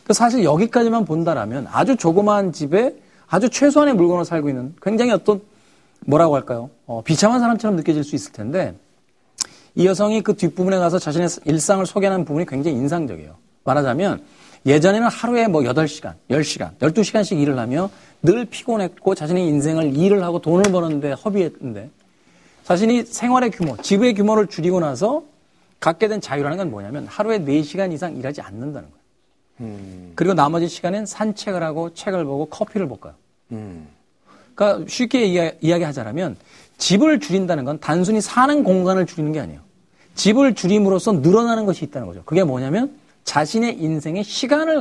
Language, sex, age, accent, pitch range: Korean, male, 40-59, native, 150-210 Hz